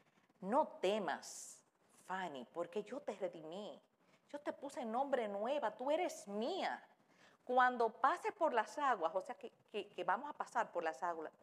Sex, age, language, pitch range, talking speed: female, 50-69, Spanish, 175-290 Hz, 165 wpm